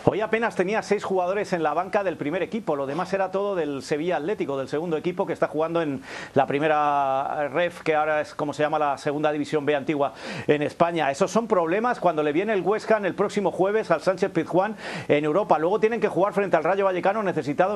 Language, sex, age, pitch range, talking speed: Spanish, male, 40-59, 150-195 Hz, 225 wpm